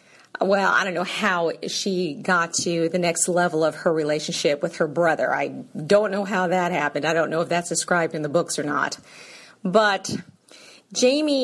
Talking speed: 190 wpm